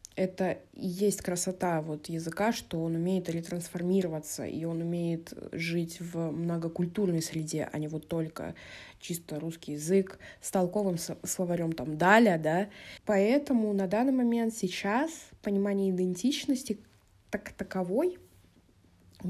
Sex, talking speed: female, 125 wpm